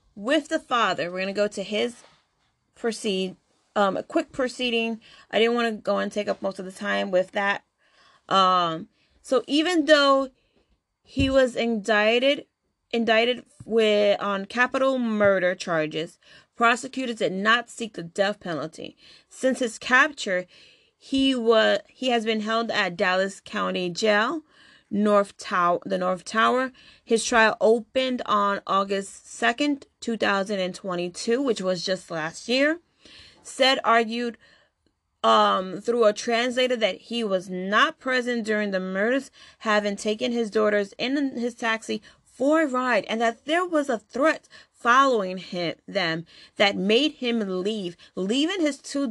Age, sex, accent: 30-49, female, American